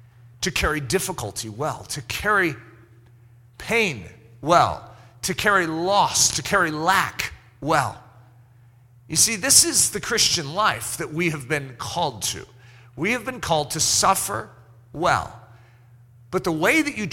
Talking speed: 140 wpm